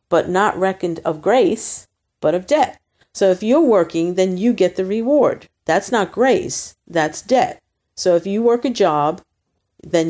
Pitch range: 155-195 Hz